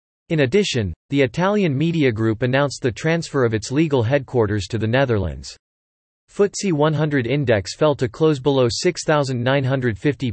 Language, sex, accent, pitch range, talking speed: English, male, American, 115-150 Hz, 140 wpm